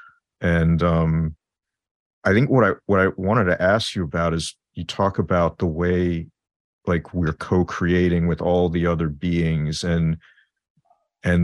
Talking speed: 150 wpm